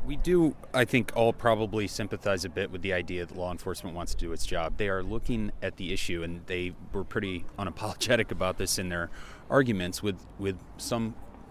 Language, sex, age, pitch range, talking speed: English, male, 30-49, 85-105 Hz, 205 wpm